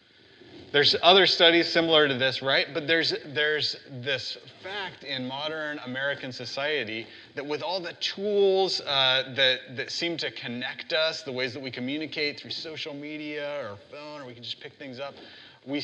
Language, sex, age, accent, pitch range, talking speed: English, male, 30-49, American, 115-145 Hz, 175 wpm